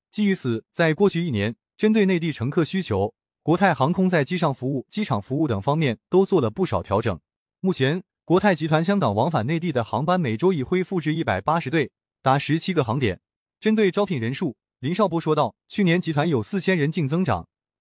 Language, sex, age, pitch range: Chinese, male, 20-39, 130-185 Hz